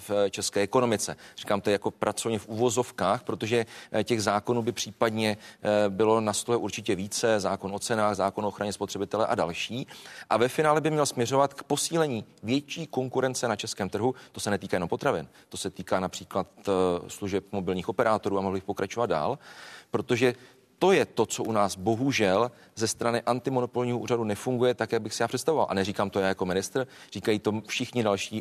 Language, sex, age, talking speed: Czech, male, 40-59, 180 wpm